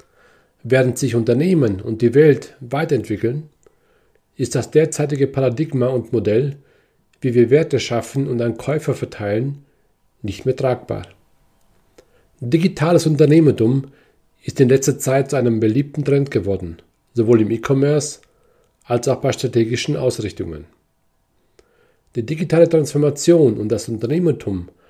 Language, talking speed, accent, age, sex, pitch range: German, 120 wpm, German, 40-59, male, 115-150 Hz